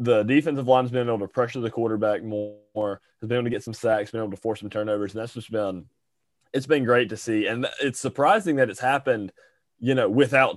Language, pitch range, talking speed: English, 105-135 Hz, 245 wpm